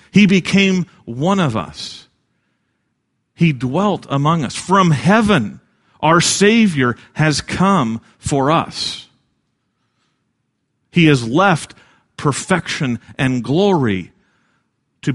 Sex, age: male, 40-59